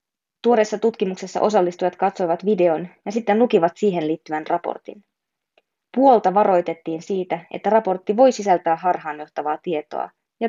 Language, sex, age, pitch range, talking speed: Finnish, female, 20-39, 165-205 Hz, 120 wpm